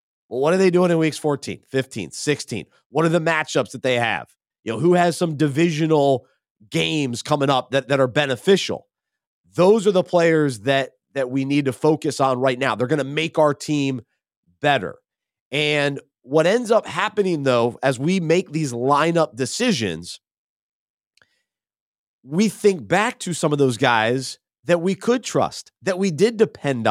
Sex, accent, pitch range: male, American, 130-175 Hz